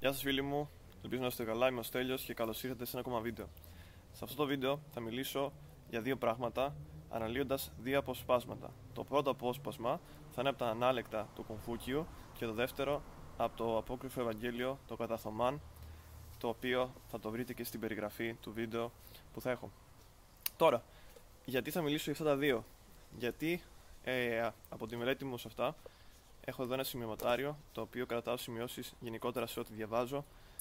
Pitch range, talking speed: 110-125 Hz, 175 wpm